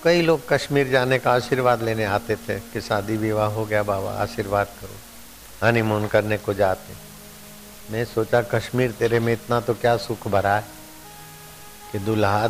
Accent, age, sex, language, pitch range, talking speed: native, 60-79, male, Hindi, 100-115 Hz, 165 wpm